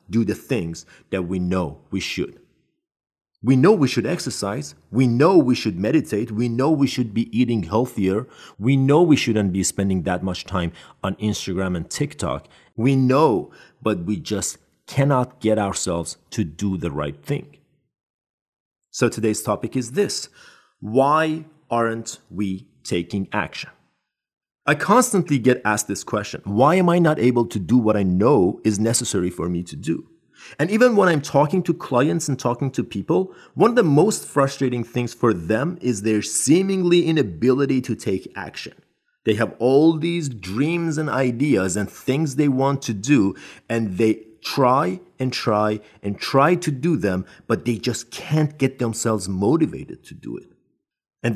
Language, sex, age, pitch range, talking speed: Persian, male, 40-59, 105-140 Hz, 165 wpm